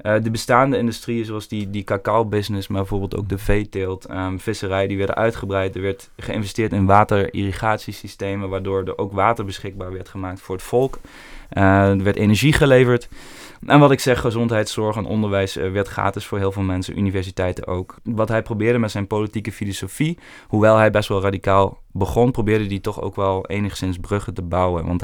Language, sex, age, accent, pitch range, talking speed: Dutch, male, 20-39, Dutch, 95-110 Hz, 180 wpm